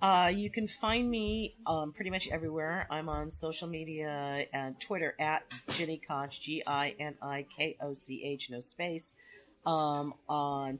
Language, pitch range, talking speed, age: English, 135-165 Hz, 130 wpm, 40-59